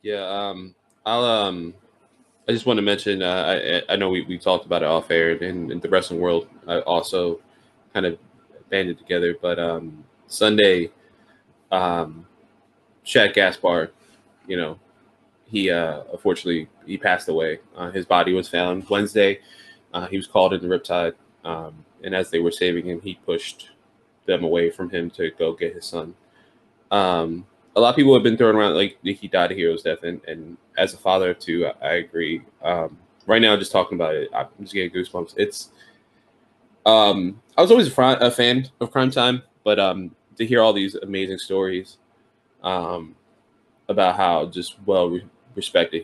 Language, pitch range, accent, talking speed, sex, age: English, 90-110 Hz, American, 180 wpm, male, 20-39